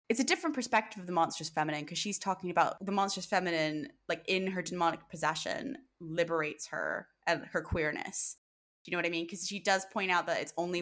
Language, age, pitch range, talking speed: English, 20-39, 160-195 Hz, 215 wpm